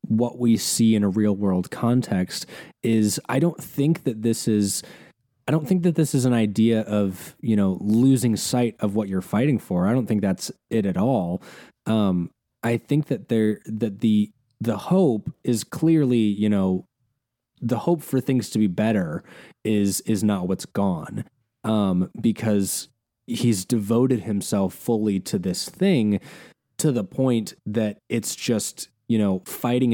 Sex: male